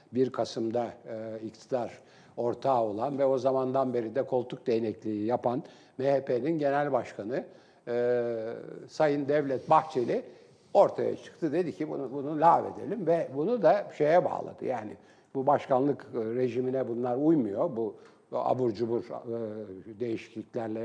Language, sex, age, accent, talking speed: Turkish, male, 60-79, native, 125 wpm